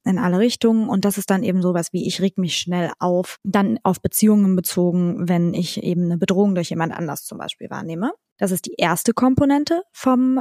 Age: 20-39